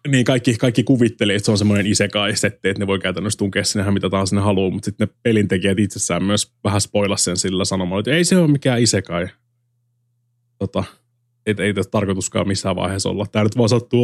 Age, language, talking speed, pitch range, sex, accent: 20-39, Finnish, 205 wpm, 95-120 Hz, male, native